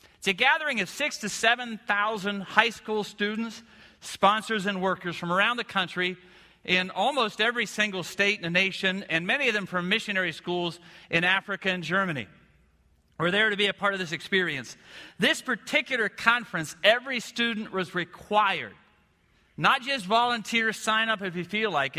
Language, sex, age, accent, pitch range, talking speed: English, male, 50-69, American, 180-225 Hz, 165 wpm